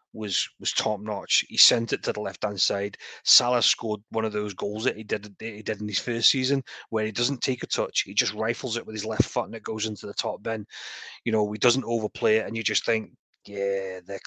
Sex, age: male, 30-49